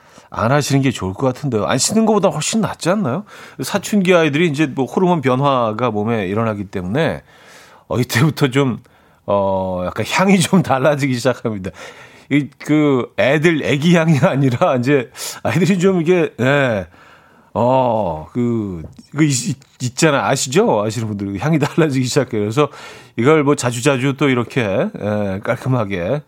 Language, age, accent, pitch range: Korean, 40-59, native, 110-150 Hz